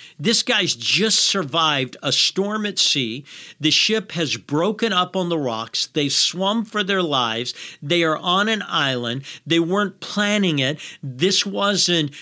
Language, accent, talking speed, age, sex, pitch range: English, American, 155 wpm, 50-69, male, 130-175 Hz